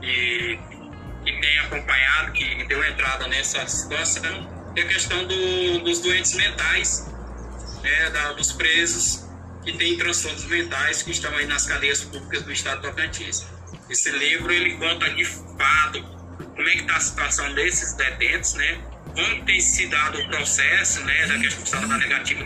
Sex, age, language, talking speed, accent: male, 20-39, Portuguese, 160 wpm, Brazilian